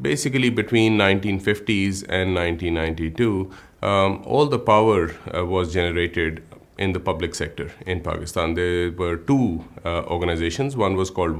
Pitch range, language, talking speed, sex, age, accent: 85-105 Hz, English, 135 wpm, male, 30-49, Indian